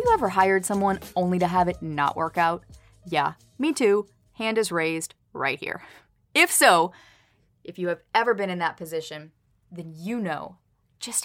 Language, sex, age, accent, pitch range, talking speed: English, female, 20-39, American, 175-250 Hz, 175 wpm